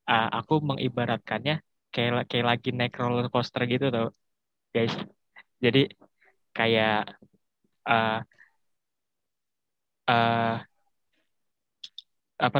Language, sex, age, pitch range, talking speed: Indonesian, male, 20-39, 120-135 Hz, 80 wpm